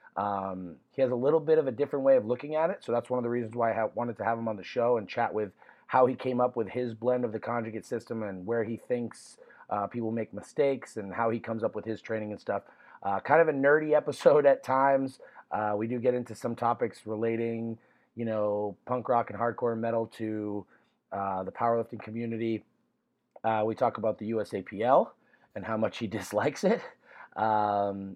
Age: 30-49